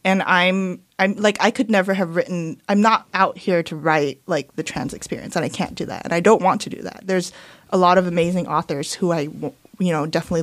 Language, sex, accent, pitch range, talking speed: English, female, American, 170-200 Hz, 255 wpm